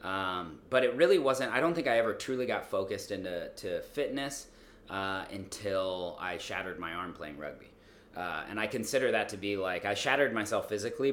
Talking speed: 195 wpm